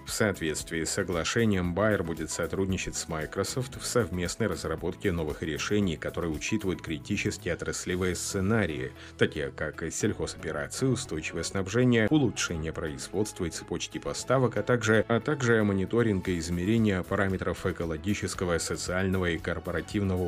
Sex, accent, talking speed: male, native, 120 wpm